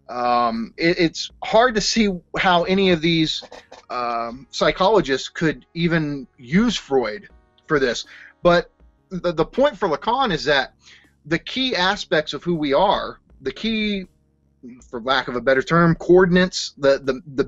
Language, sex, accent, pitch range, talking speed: English, male, American, 130-180 Hz, 155 wpm